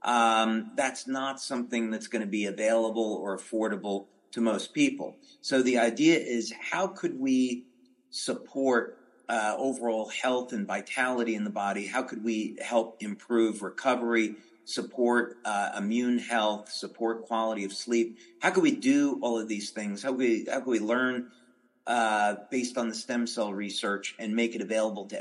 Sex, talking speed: male, 165 wpm